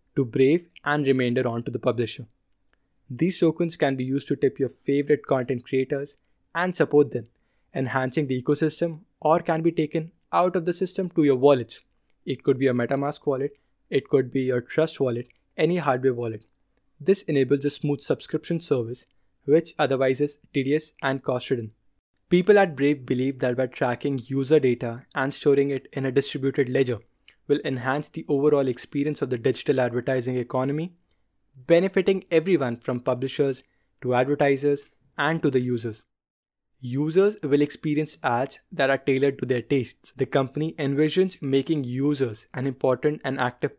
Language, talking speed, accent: English, 165 wpm, Indian